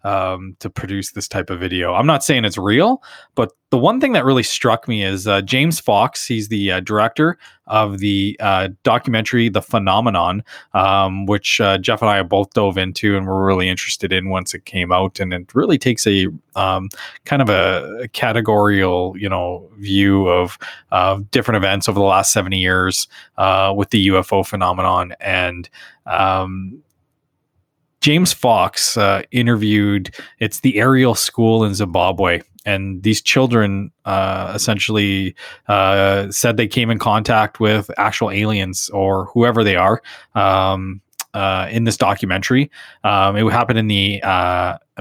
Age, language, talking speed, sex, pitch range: 20-39, English, 165 wpm, male, 95-110 Hz